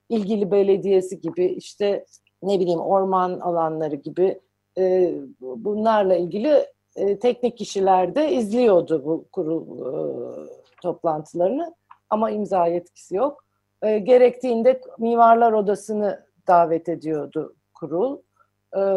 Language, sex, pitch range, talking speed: Turkish, female, 175-240 Hz, 105 wpm